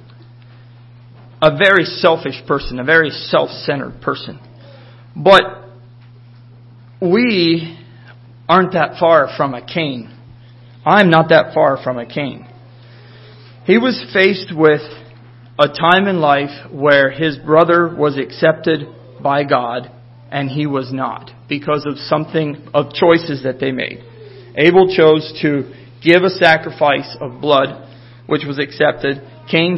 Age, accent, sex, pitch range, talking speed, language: 40-59, American, male, 120-160 Hz, 125 wpm, English